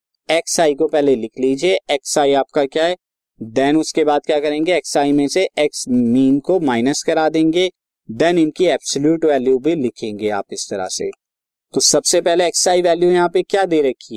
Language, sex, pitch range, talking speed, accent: Hindi, male, 140-180 Hz, 180 wpm, native